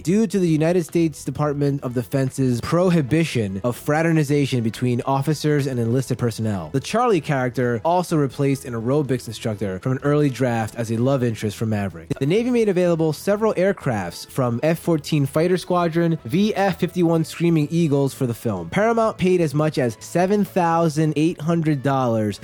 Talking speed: 150 wpm